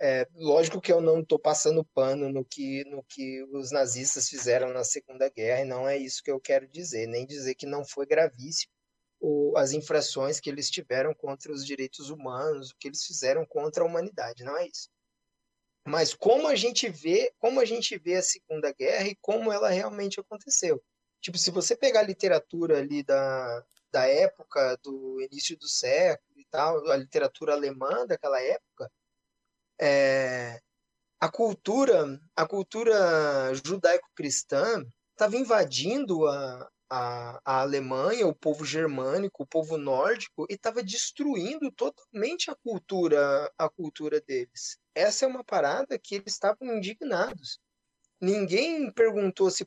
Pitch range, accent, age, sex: 140-230 Hz, Brazilian, 20-39, male